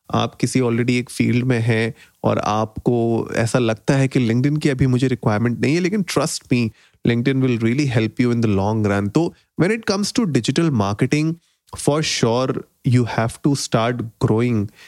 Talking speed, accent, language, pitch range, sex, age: 170 wpm, native, Hindi, 115-140 Hz, male, 30-49